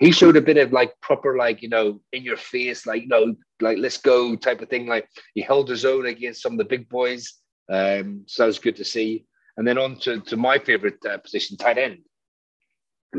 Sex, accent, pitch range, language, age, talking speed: male, British, 110-130 Hz, English, 30-49, 235 wpm